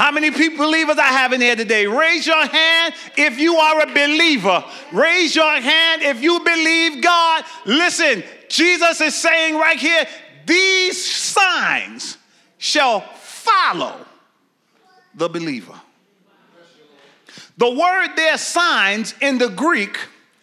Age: 40-59